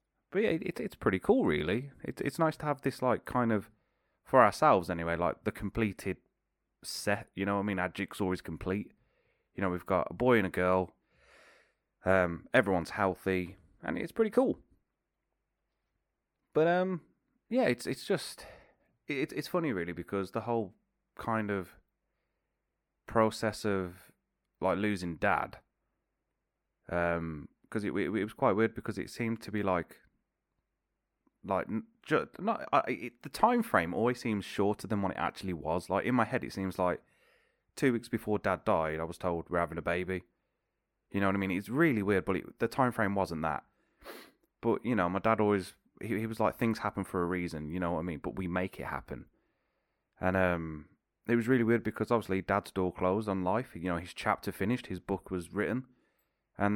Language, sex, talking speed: English, male, 190 wpm